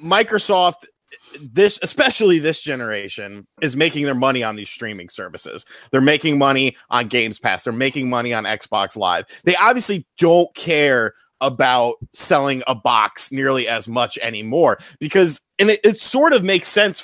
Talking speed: 160 wpm